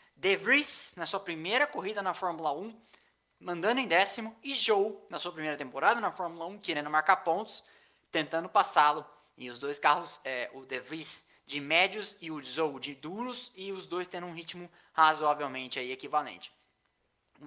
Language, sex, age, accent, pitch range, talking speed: Portuguese, male, 20-39, Brazilian, 145-200 Hz, 180 wpm